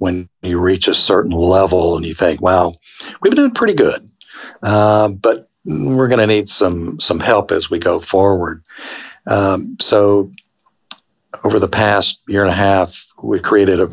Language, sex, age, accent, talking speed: English, male, 60-79, American, 170 wpm